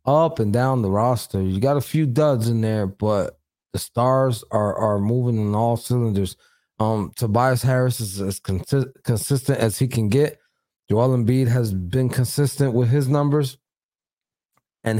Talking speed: 160 wpm